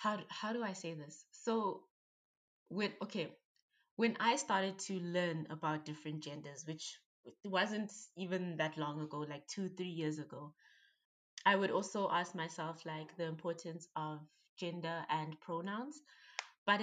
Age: 20-39